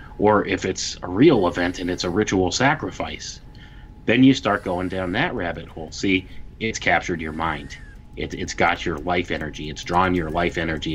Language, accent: English, American